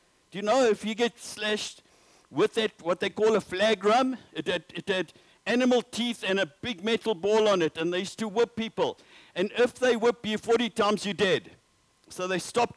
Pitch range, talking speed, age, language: 195-235 Hz, 215 wpm, 60-79, English